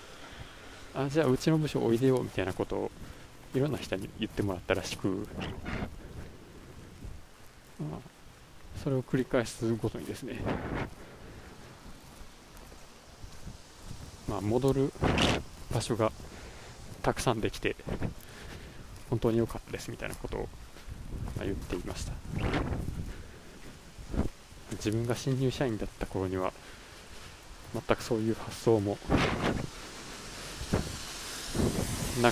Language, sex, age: Japanese, male, 20-39